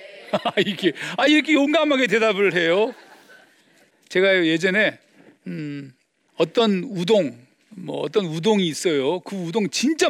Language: Korean